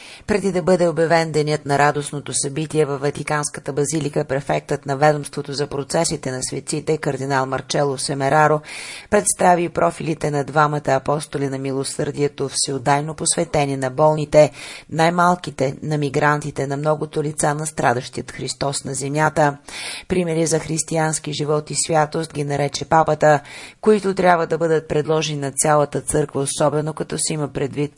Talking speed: 140 wpm